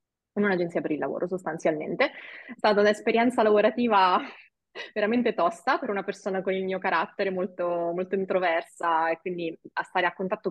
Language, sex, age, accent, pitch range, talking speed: Italian, female, 20-39, native, 175-210 Hz, 155 wpm